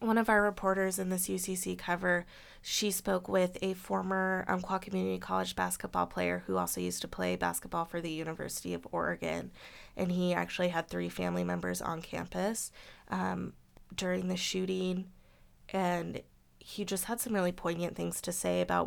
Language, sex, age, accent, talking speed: English, female, 20-39, American, 170 wpm